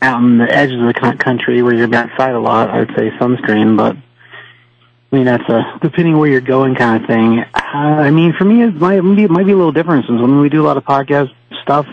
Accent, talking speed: American, 250 wpm